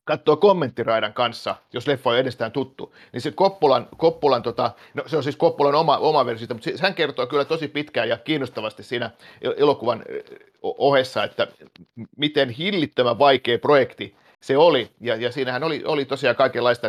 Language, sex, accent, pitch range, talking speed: Finnish, male, native, 120-150 Hz, 165 wpm